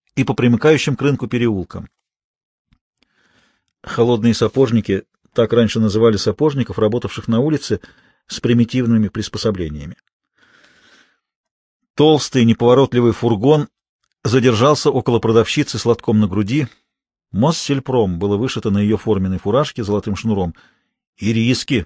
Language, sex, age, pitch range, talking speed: Russian, male, 40-59, 110-145 Hz, 105 wpm